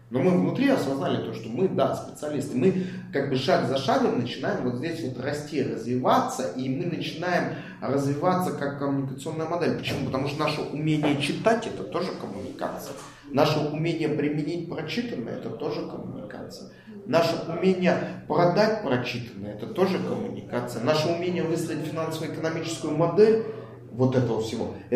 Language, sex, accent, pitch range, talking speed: Russian, male, native, 130-165 Hz, 150 wpm